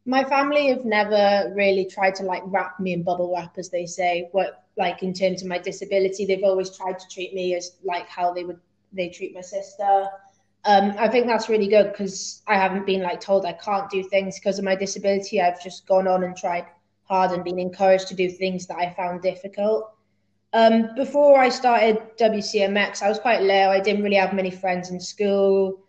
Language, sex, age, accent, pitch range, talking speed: English, female, 20-39, British, 185-200 Hz, 215 wpm